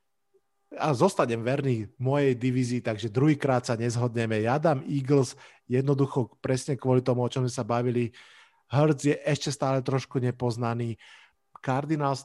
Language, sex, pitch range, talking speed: Slovak, male, 120-140 Hz, 135 wpm